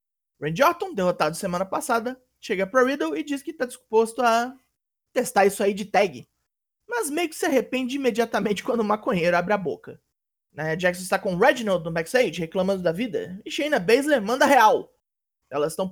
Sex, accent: male, Brazilian